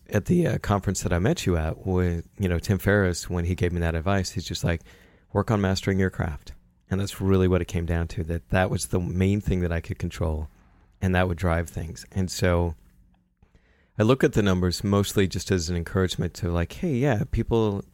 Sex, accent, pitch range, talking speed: male, American, 85-100 Hz, 230 wpm